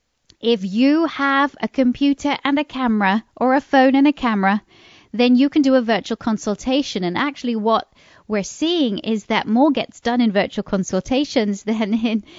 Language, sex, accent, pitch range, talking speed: English, female, British, 190-255 Hz, 175 wpm